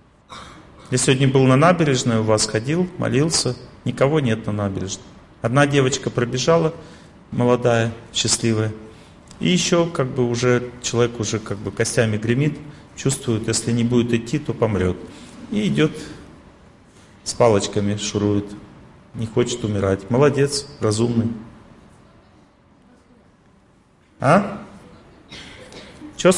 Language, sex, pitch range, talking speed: Russian, male, 110-160 Hz, 110 wpm